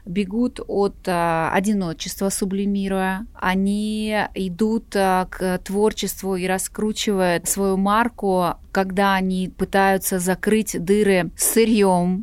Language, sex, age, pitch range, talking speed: Russian, female, 20-39, 180-210 Hz, 90 wpm